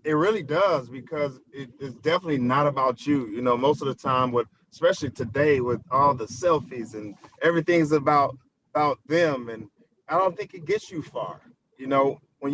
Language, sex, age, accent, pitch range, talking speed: English, male, 40-59, American, 135-170 Hz, 180 wpm